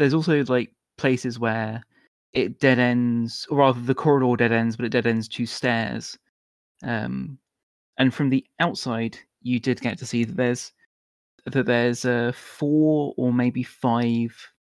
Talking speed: 160 wpm